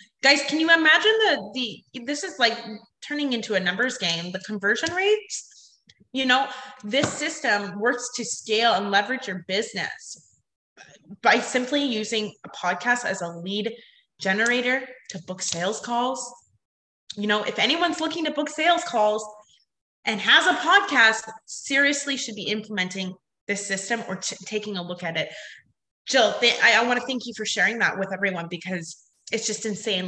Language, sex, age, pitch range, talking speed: English, female, 20-39, 200-270 Hz, 160 wpm